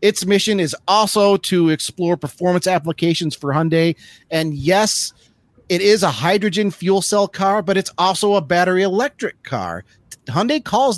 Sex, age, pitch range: male, 30-49, 135-180 Hz